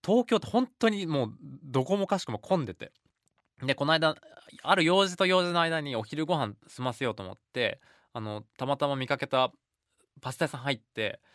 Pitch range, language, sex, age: 115-160 Hz, Japanese, male, 20-39